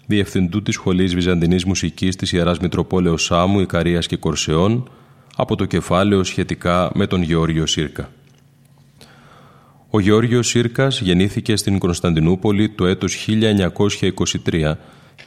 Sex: male